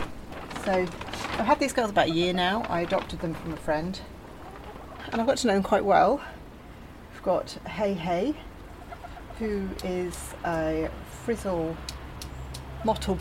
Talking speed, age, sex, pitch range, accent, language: 145 wpm, 40-59, female, 150-200 Hz, British, English